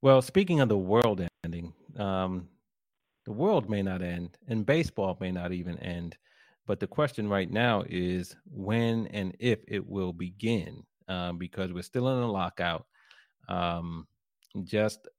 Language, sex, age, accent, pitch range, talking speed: English, male, 30-49, American, 90-110 Hz, 155 wpm